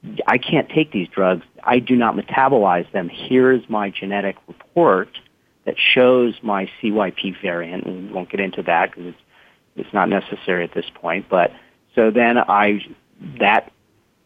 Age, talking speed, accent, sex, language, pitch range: 40-59, 155 wpm, American, male, English, 90-110 Hz